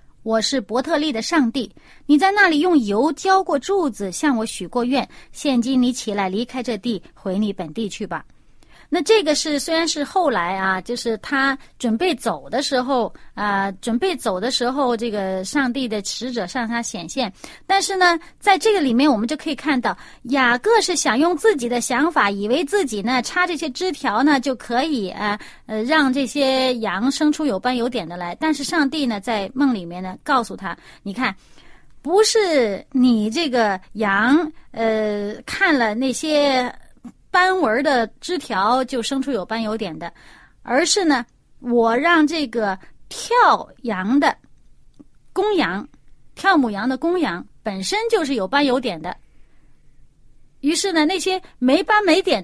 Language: Chinese